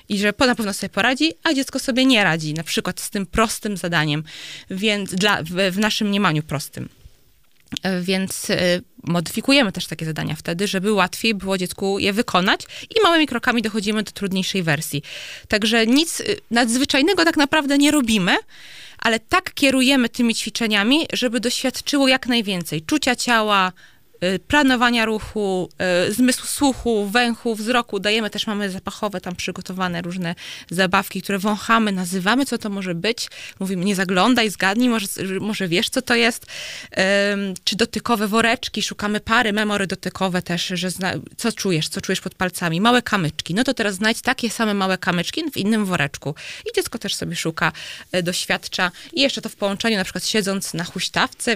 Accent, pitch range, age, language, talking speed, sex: native, 185-235 Hz, 20-39, Polish, 160 wpm, female